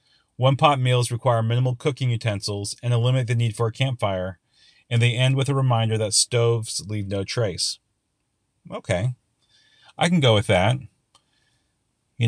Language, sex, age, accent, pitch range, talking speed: English, male, 40-59, American, 105-130 Hz, 155 wpm